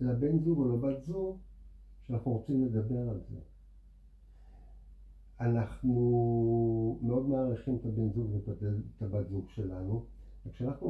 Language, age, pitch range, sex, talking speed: Hebrew, 50-69, 105-145 Hz, male, 115 wpm